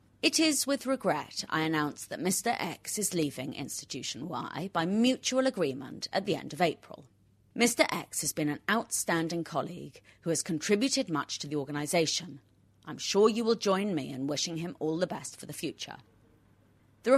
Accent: British